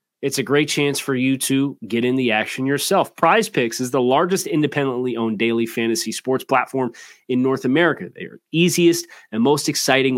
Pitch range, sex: 125-170 Hz, male